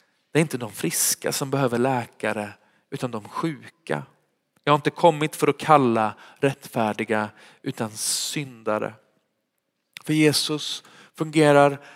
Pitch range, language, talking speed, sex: 145-180 Hz, Swedish, 120 wpm, male